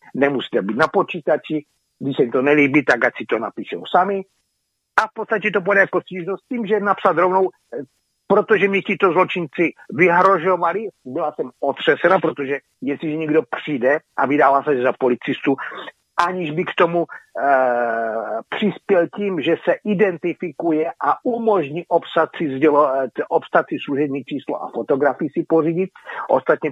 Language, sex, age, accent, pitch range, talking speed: Czech, male, 50-69, native, 150-190 Hz, 145 wpm